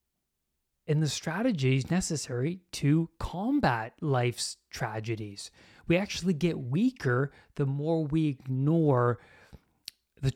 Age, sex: 30-49, male